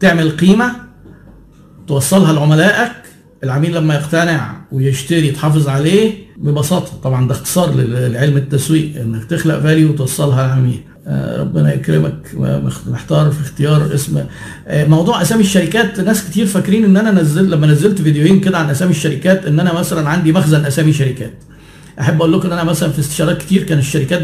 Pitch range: 145-180 Hz